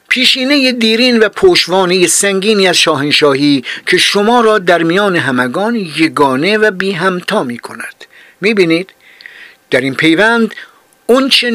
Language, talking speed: Persian, 120 wpm